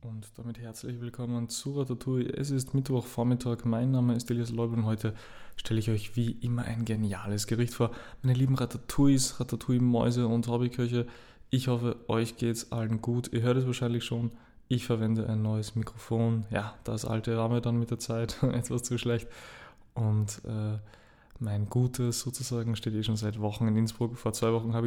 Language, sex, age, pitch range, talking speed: German, male, 20-39, 115-125 Hz, 185 wpm